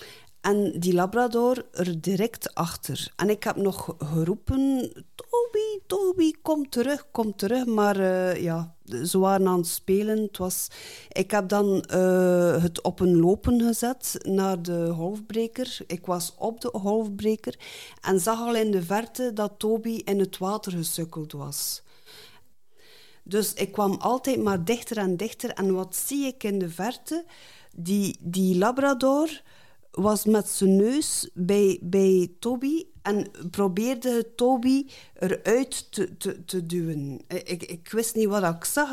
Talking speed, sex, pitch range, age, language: 150 wpm, female, 185-245 Hz, 50-69, Dutch